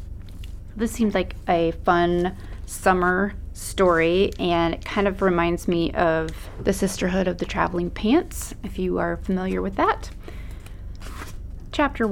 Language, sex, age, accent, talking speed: English, female, 30-49, American, 135 wpm